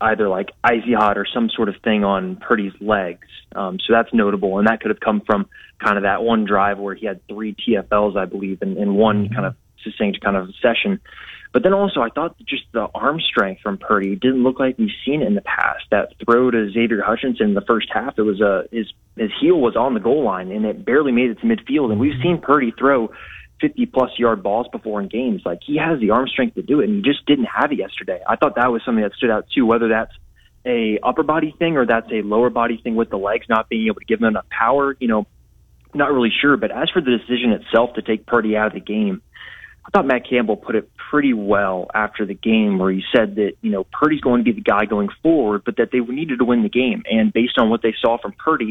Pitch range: 105-125 Hz